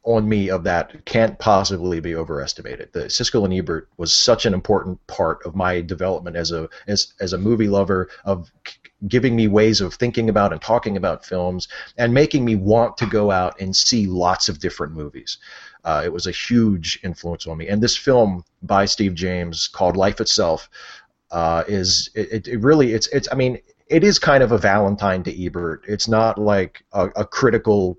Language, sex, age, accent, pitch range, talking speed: English, male, 30-49, American, 90-110 Hz, 195 wpm